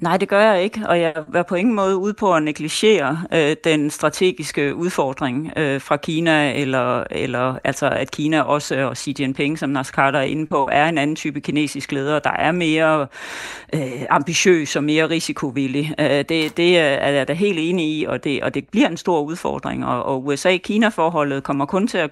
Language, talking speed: Danish, 200 wpm